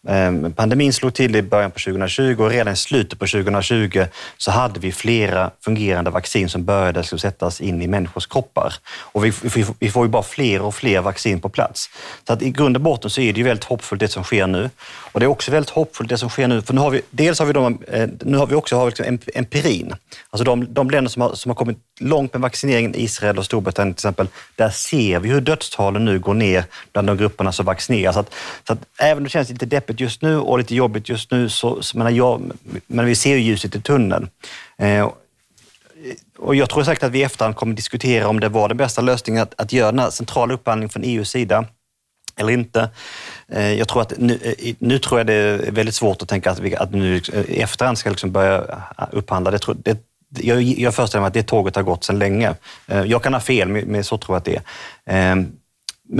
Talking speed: 230 wpm